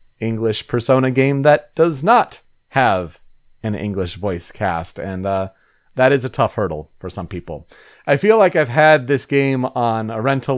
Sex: male